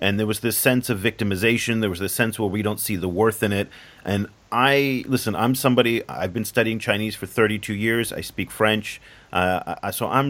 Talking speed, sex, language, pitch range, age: 215 wpm, male, English, 95-120 Hz, 40-59